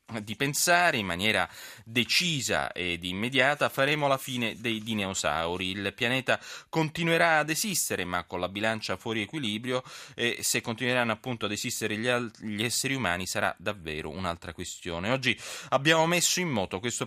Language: Italian